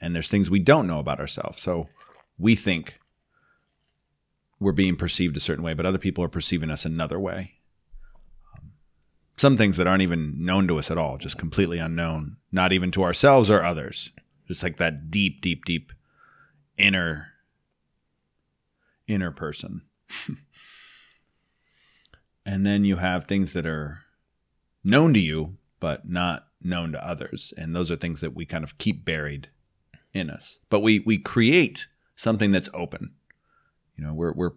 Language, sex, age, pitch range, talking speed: English, male, 30-49, 85-105 Hz, 160 wpm